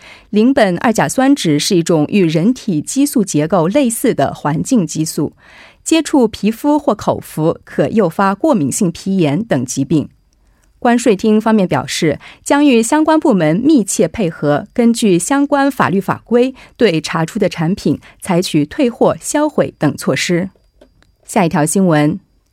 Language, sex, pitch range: Korean, female, 165-250 Hz